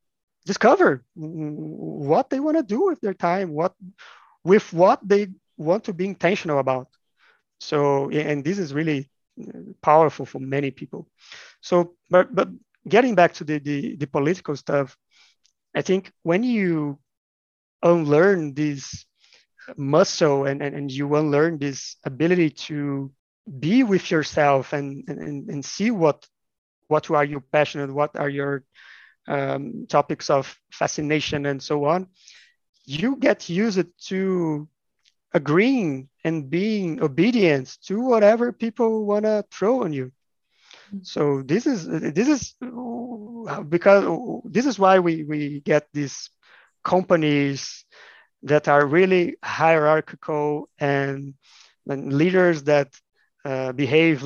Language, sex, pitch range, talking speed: English, male, 145-185 Hz, 125 wpm